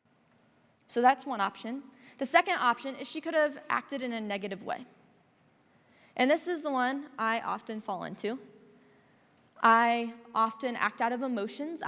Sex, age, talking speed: female, 20-39, 155 wpm